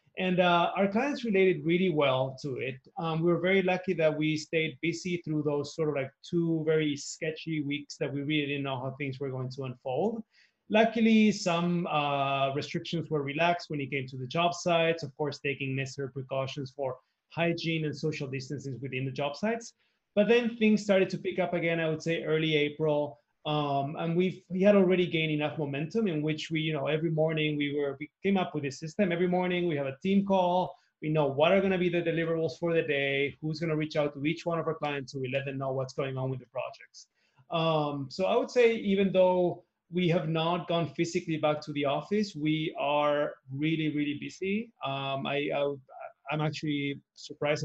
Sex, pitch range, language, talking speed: male, 145-180 Hz, English, 215 wpm